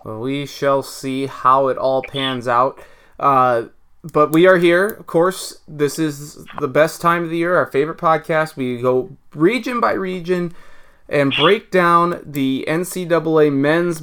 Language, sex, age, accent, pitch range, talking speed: English, male, 30-49, American, 135-190 Hz, 160 wpm